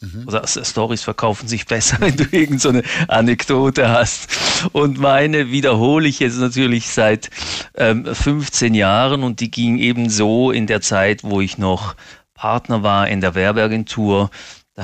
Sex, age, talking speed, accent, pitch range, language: male, 40-59, 150 wpm, German, 100-130 Hz, German